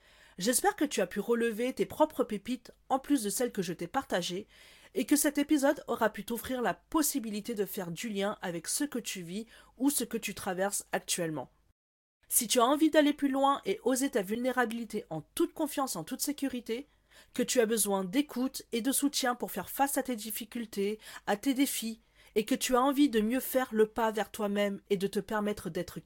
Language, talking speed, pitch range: French, 210 wpm, 195-255 Hz